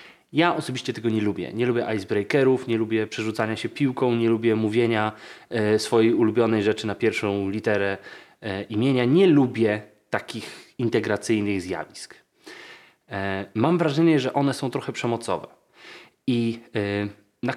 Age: 20-39